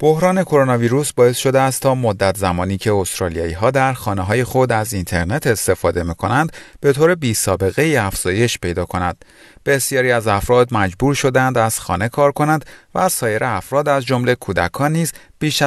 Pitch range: 95-135 Hz